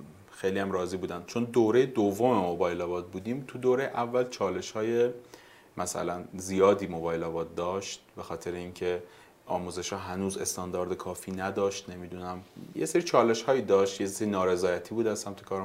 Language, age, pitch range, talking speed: Persian, 30-49, 90-110 Hz, 165 wpm